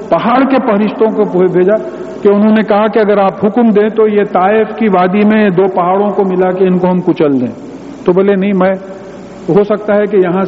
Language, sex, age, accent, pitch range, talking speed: English, male, 50-69, Indian, 185-245 Hz, 210 wpm